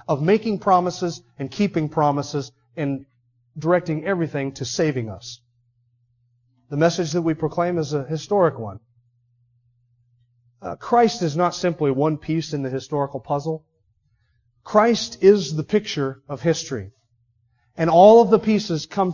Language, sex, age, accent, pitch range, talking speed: English, male, 40-59, American, 120-195 Hz, 140 wpm